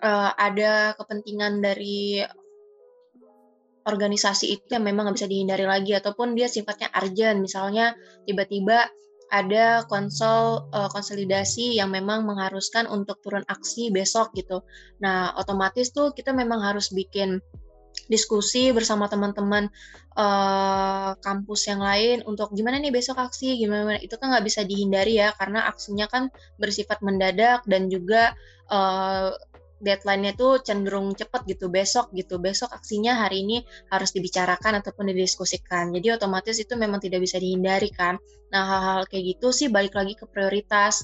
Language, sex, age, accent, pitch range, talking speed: Indonesian, female, 20-39, native, 195-220 Hz, 140 wpm